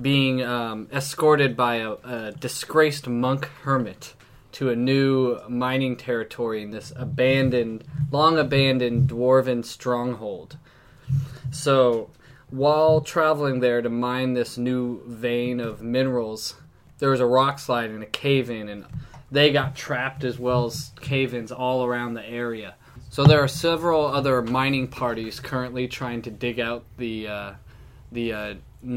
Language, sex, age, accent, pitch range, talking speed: English, male, 20-39, American, 120-140 Hz, 140 wpm